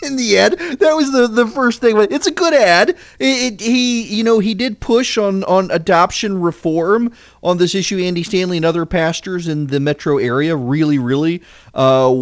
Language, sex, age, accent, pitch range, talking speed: English, male, 30-49, American, 135-185 Hz, 200 wpm